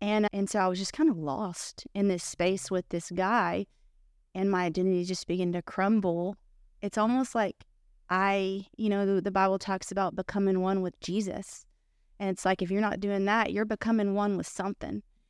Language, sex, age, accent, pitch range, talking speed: English, female, 20-39, American, 180-210 Hz, 195 wpm